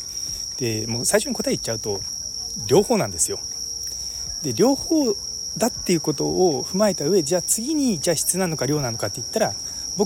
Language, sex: Japanese, male